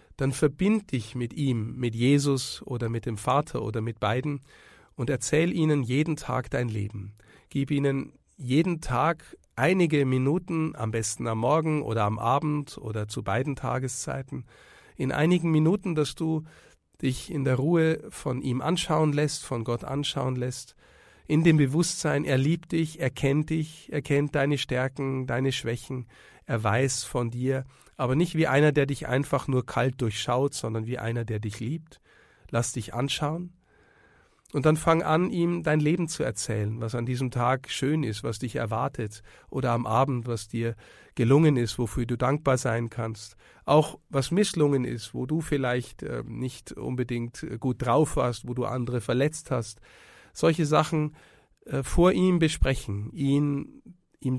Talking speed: 165 wpm